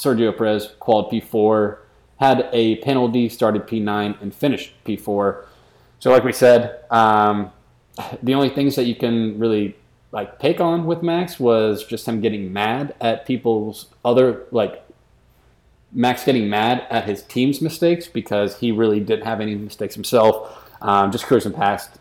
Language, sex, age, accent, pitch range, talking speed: English, male, 30-49, American, 105-125 Hz, 155 wpm